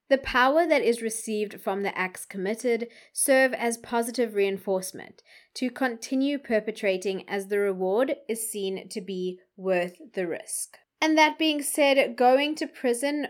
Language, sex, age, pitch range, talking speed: English, female, 20-39, 195-245 Hz, 150 wpm